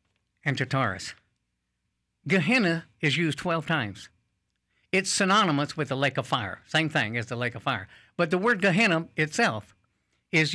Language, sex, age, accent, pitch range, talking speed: English, male, 60-79, American, 120-160 Hz, 160 wpm